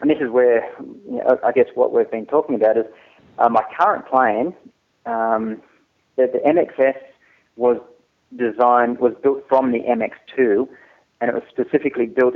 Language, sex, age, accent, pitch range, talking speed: English, male, 30-49, Australian, 110-125 Hz, 155 wpm